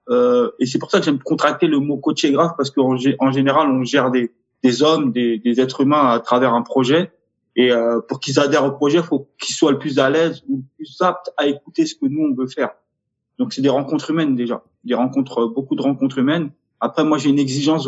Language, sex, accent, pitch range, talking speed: French, male, French, 130-160 Hz, 260 wpm